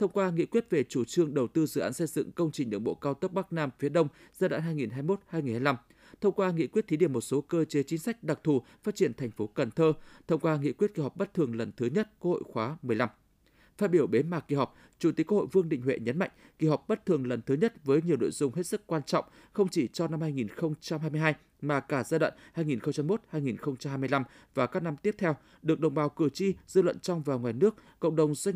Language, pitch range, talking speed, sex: Vietnamese, 140-185 Hz, 250 wpm, male